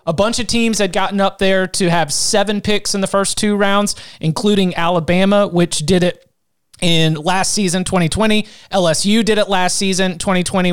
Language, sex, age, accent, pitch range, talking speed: English, male, 30-49, American, 165-205 Hz, 180 wpm